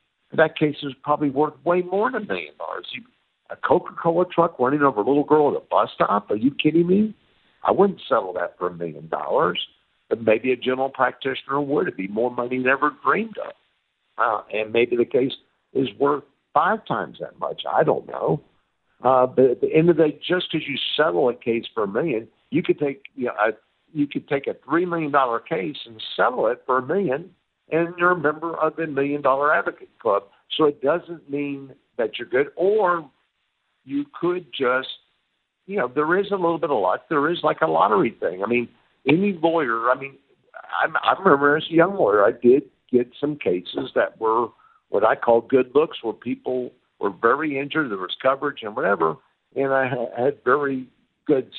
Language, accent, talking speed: English, American, 200 wpm